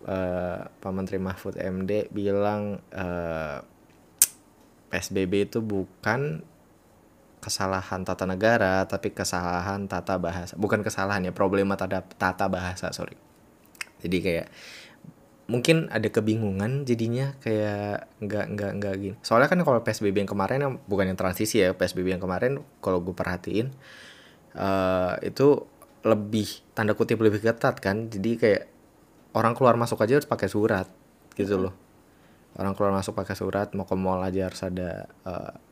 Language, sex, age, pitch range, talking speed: Indonesian, male, 20-39, 95-105 Hz, 140 wpm